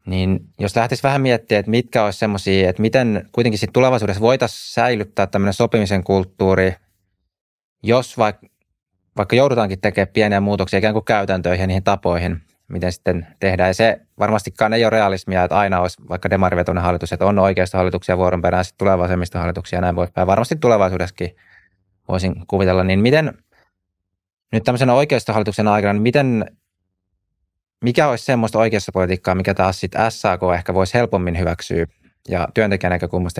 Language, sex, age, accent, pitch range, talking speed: Finnish, male, 20-39, native, 90-110 Hz, 145 wpm